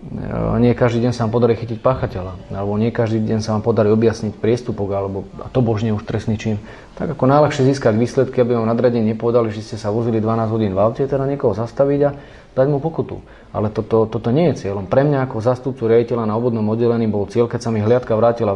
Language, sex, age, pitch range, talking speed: Slovak, male, 30-49, 110-135 Hz, 225 wpm